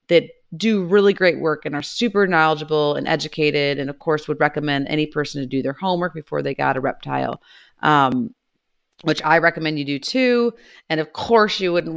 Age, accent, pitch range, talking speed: 30-49, American, 155-205 Hz, 195 wpm